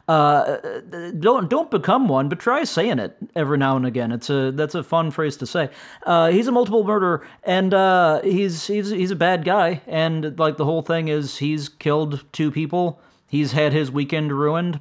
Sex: male